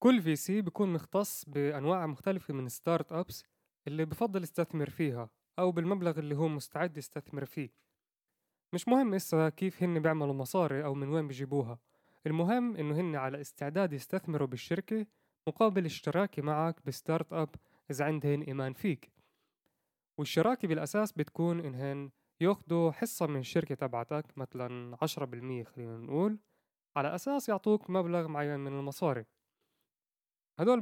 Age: 20-39